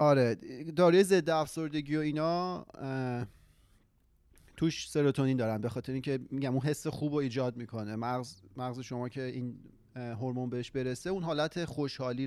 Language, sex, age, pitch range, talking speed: Persian, male, 30-49, 120-145 Hz, 140 wpm